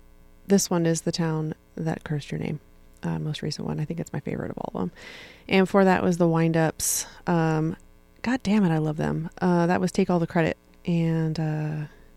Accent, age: American, 30-49